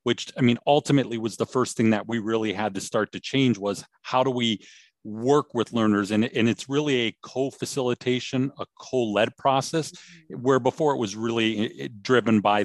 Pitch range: 110-135 Hz